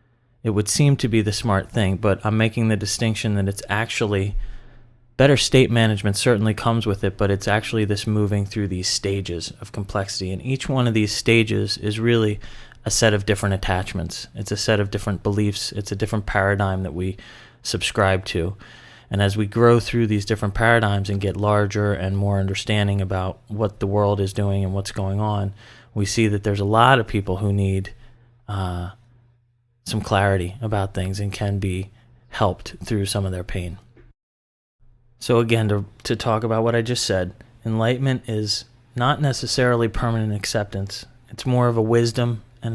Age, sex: 30-49, male